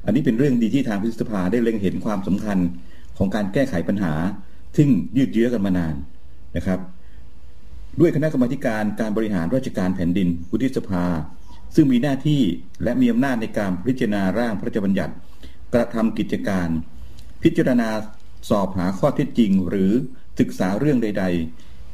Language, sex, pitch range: Thai, male, 85-125 Hz